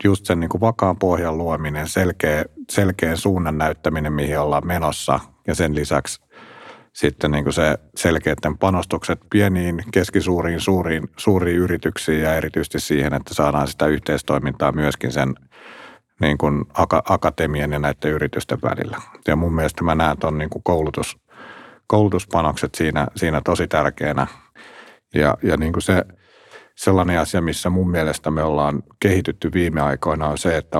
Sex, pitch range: male, 75-90 Hz